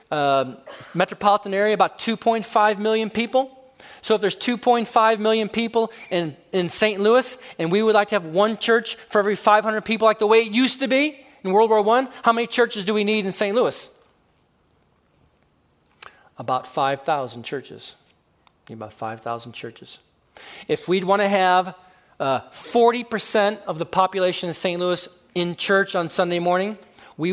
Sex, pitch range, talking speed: male, 145-210 Hz, 165 wpm